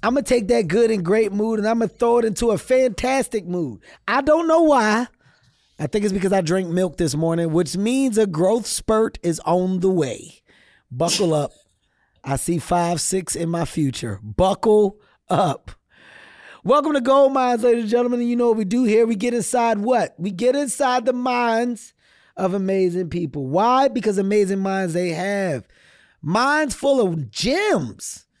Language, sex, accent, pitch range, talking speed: English, male, American, 175-235 Hz, 185 wpm